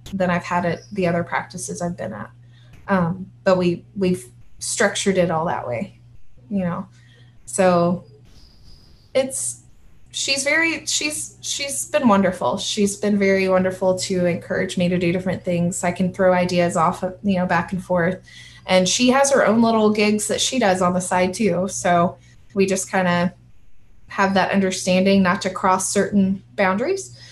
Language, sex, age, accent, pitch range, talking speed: English, female, 20-39, American, 175-195 Hz, 175 wpm